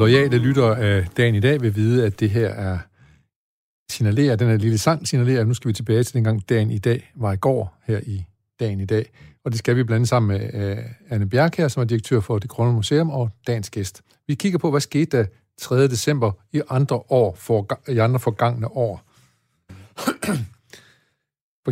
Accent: native